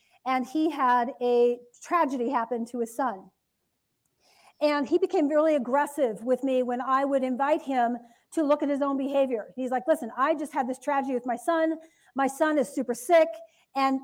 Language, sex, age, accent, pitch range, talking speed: English, female, 40-59, American, 250-310 Hz, 190 wpm